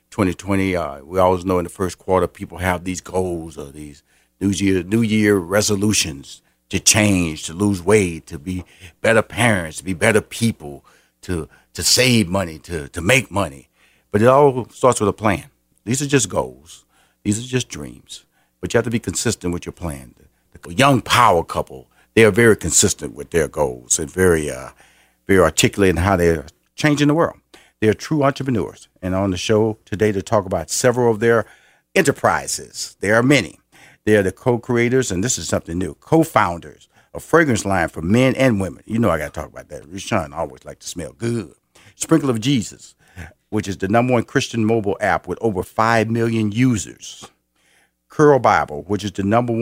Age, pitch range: 50-69, 90-125 Hz